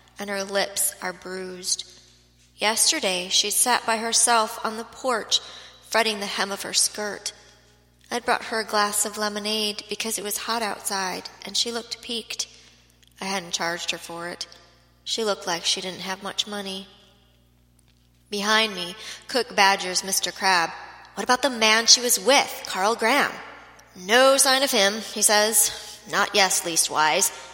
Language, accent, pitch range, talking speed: English, American, 190-225 Hz, 160 wpm